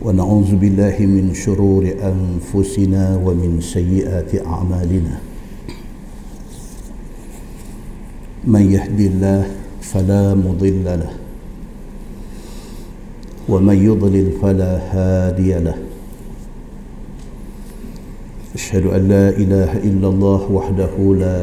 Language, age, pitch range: Malay, 50-69, 90-100 Hz